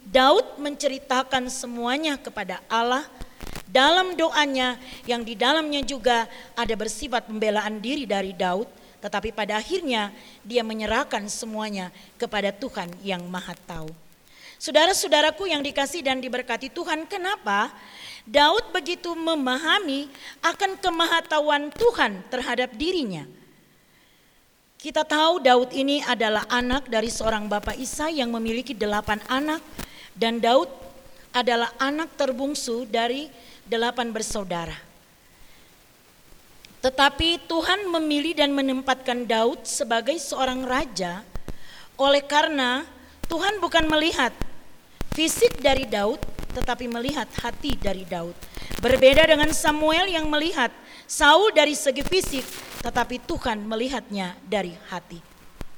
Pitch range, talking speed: 225-300 Hz, 110 wpm